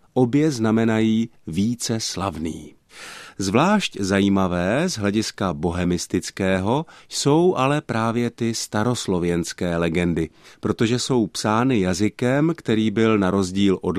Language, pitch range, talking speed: Czech, 95-120 Hz, 105 wpm